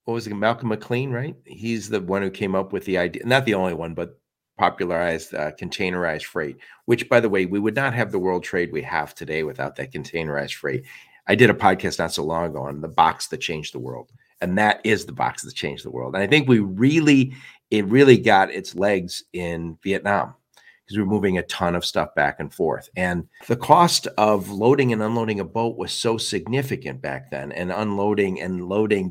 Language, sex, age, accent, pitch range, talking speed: English, male, 50-69, American, 95-125 Hz, 220 wpm